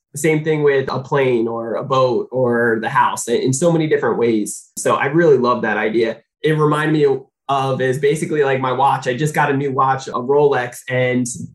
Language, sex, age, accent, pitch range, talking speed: English, male, 20-39, American, 125-150 Hz, 210 wpm